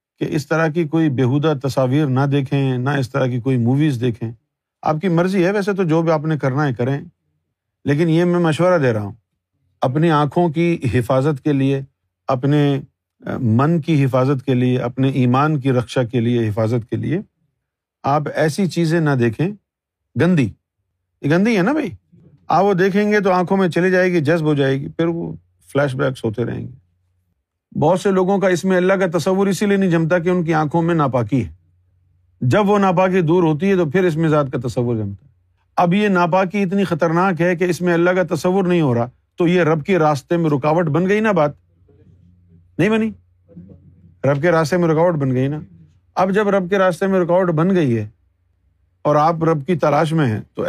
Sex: male